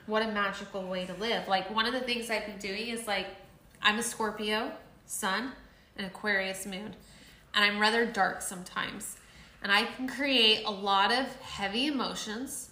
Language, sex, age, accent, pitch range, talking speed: English, female, 20-39, American, 195-235 Hz, 175 wpm